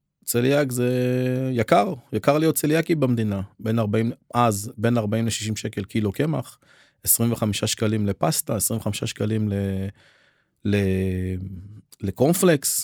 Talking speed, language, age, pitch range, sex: 105 wpm, Hebrew, 30-49, 105-125 Hz, male